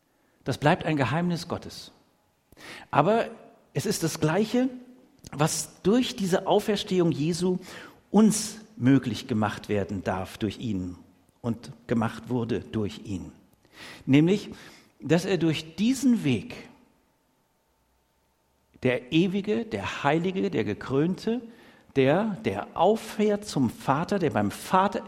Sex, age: male, 50-69